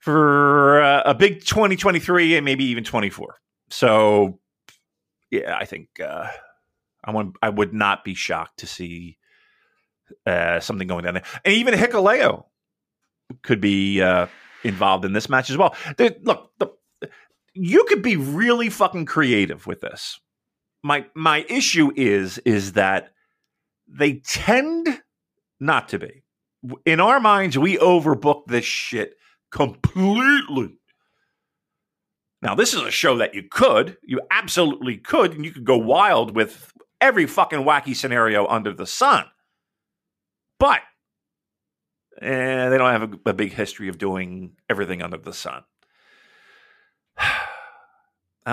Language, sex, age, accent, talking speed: English, male, 40-59, American, 135 wpm